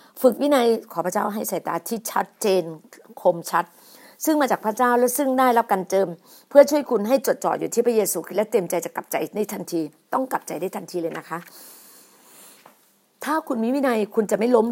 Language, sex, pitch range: Thai, female, 200-260 Hz